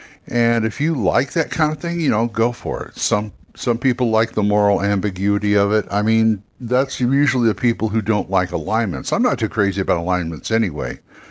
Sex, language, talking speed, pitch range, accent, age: male, English, 205 wpm, 95-115 Hz, American, 60-79